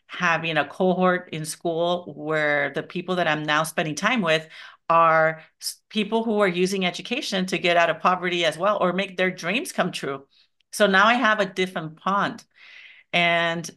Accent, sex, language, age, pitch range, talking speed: American, female, English, 40-59, 160-195 Hz, 180 wpm